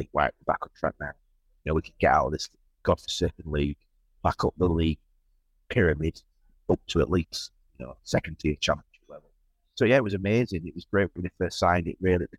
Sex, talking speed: male, 220 wpm